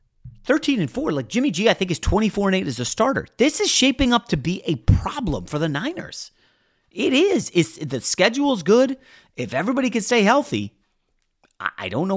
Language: English